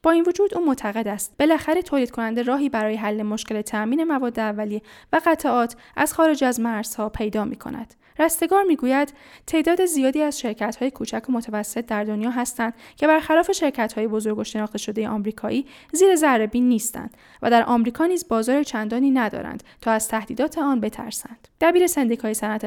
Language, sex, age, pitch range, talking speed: Persian, female, 10-29, 220-285 Hz, 170 wpm